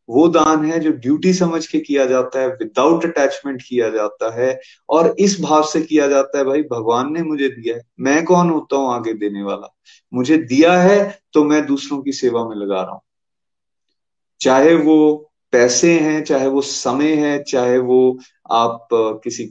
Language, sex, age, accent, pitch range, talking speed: Hindi, male, 30-49, native, 120-155 Hz, 180 wpm